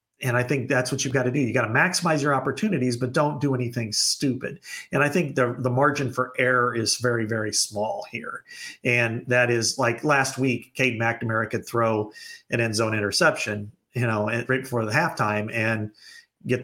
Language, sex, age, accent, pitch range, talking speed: English, male, 40-59, American, 115-135 Hz, 200 wpm